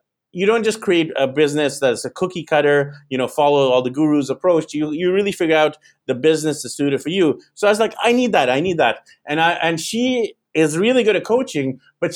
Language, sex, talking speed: English, male, 235 wpm